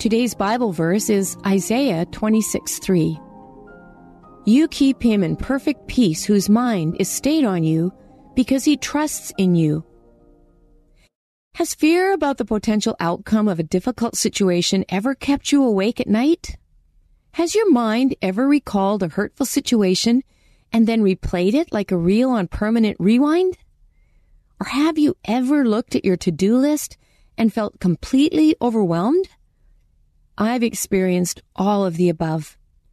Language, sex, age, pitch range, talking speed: English, female, 40-59, 185-260 Hz, 140 wpm